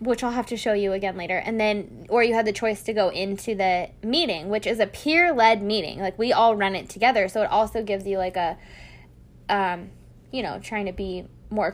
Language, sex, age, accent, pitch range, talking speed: English, female, 10-29, American, 195-235 Hz, 235 wpm